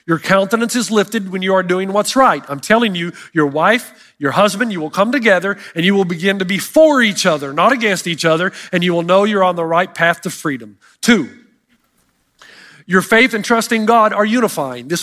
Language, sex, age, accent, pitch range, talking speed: English, male, 40-59, American, 200-260 Hz, 220 wpm